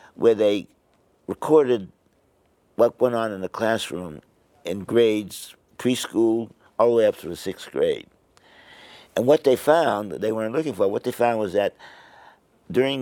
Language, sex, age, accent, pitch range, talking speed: English, male, 60-79, American, 105-130 Hz, 155 wpm